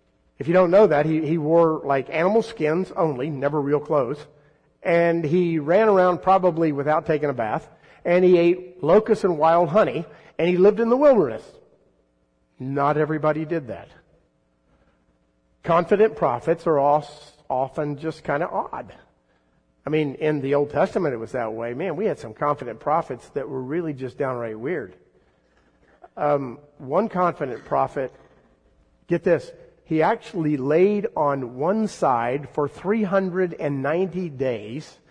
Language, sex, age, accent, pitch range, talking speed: English, male, 50-69, American, 125-180 Hz, 145 wpm